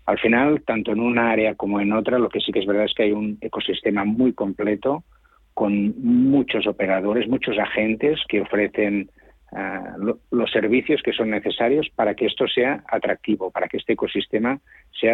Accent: Spanish